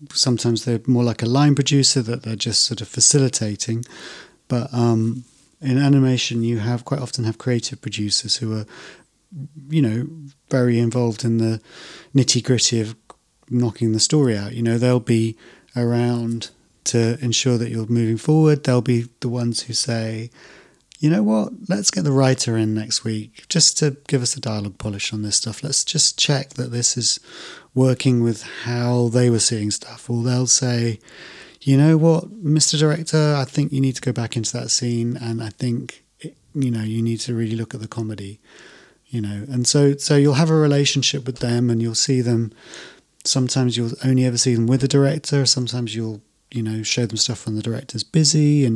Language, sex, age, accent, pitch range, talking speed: English, male, 30-49, British, 115-135 Hz, 195 wpm